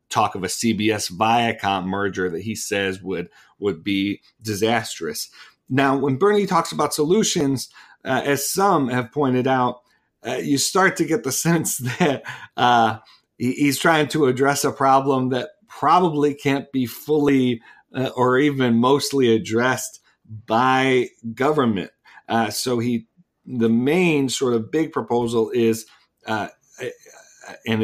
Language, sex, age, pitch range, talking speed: English, male, 40-59, 105-130 Hz, 140 wpm